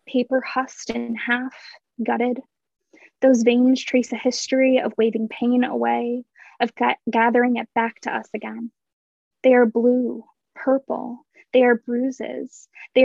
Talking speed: 135 wpm